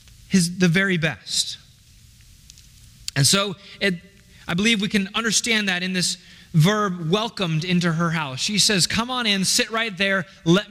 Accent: American